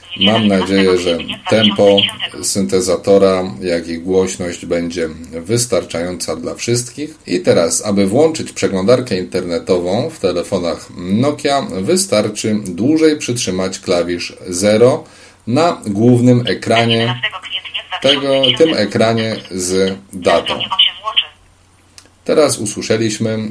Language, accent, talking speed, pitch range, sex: Polish, native, 90 wpm, 95-120 Hz, male